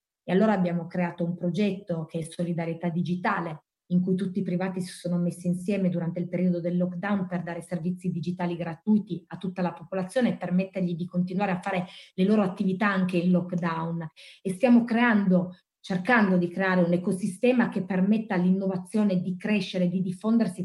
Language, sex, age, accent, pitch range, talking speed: Italian, female, 20-39, native, 175-190 Hz, 175 wpm